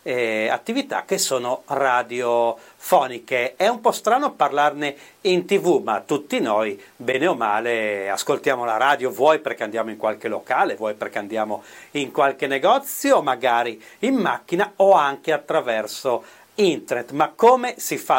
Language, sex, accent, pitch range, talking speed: Italian, male, native, 120-175 Hz, 140 wpm